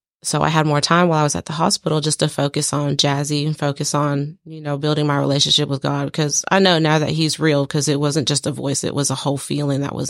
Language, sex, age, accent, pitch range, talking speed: English, female, 30-49, American, 145-160 Hz, 275 wpm